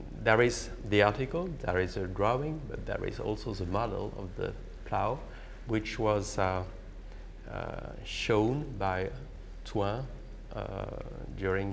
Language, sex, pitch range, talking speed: English, male, 100-120 Hz, 135 wpm